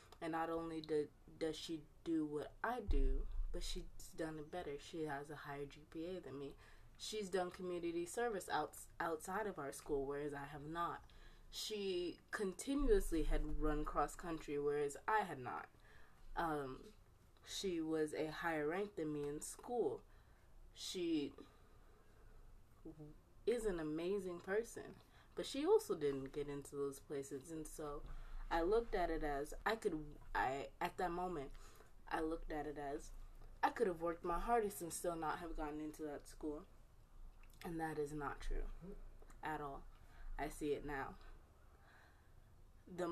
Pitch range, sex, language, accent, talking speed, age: 145-175 Hz, female, English, American, 150 wpm, 20-39